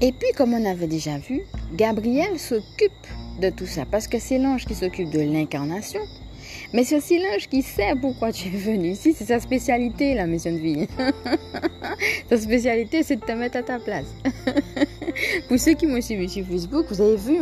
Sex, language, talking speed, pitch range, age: female, French, 195 wpm, 185-280 Hz, 20-39